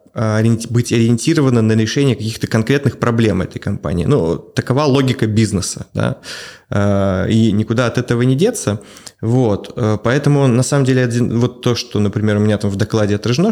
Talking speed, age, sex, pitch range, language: 155 wpm, 20-39, male, 110-130 Hz, Russian